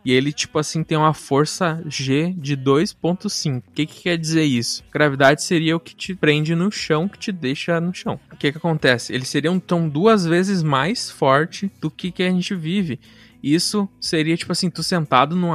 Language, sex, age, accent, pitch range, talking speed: Portuguese, male, 20-39, Brazilian, 140-180 Hz, 210 wpm